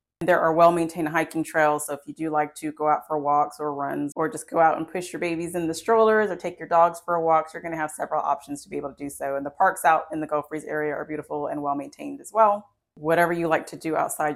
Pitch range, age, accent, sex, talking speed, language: 150-180 Hz, 20-39, American, female, 285 wpm, English